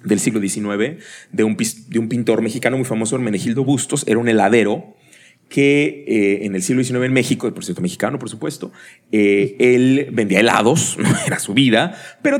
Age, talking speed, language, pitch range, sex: 30-49, 180 wpm, Spanish, 120-190 Hz, male